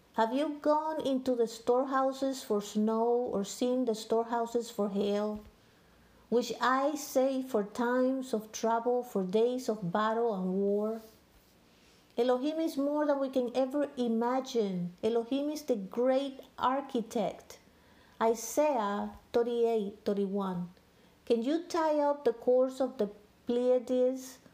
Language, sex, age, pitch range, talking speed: English, female, 50-69, 225-275 Hz, 125 wpm